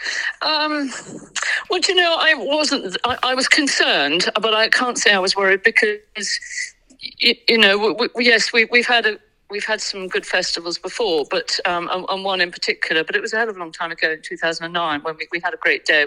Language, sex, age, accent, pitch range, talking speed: English, female, 50-69, British, 160-215 Hz, 230 wpm